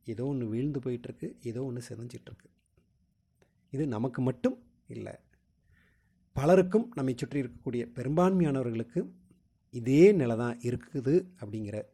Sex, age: male, 30-49